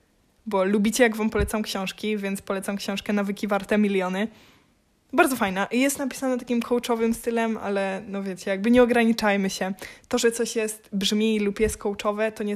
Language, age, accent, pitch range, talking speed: Polish, 20-39, native, 190-220 Hz, 170 wpm